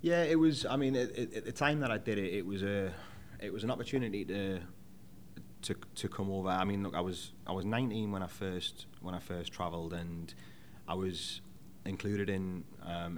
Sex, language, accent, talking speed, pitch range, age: male, English, British, 215 wpm, 90-100 Hz, 30-49